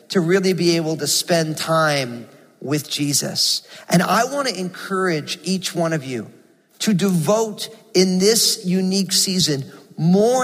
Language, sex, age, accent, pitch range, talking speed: English, male, 40-59, American, 160-200 Hz, 140 wpm